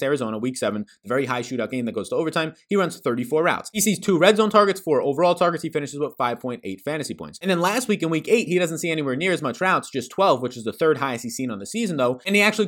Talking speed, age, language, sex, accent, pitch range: 295 wpm, 20-39, English, male, American, 115-170 Hz